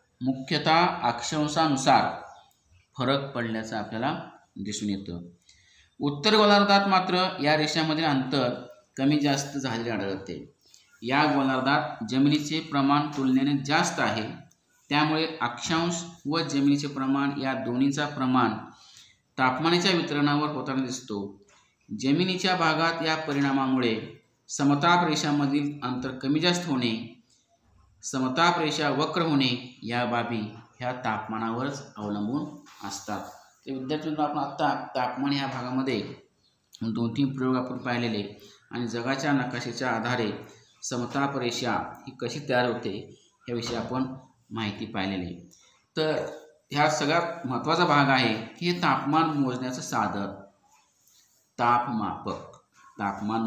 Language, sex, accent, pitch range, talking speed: Marathi, male, native, 115-150 Hz, 105 wpm